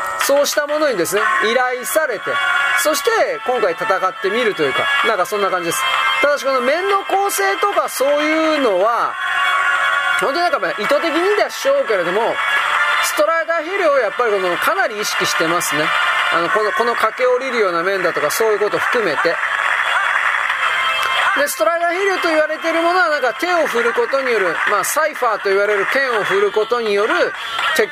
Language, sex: Japanese, male